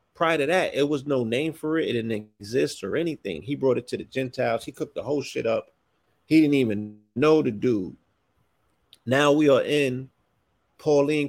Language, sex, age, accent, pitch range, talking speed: English, male, 40-59, American, 120-150 Hz, 195 wpm